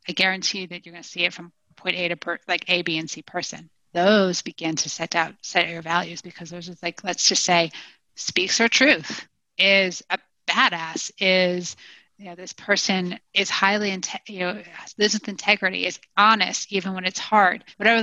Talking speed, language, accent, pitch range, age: 205 wpm, English, American, 175-205 Hz, 30-49